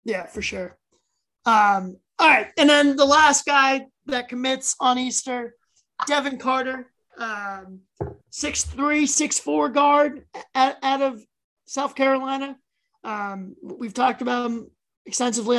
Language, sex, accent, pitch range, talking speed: English, male, American, 220-260 Hz, 120 wpm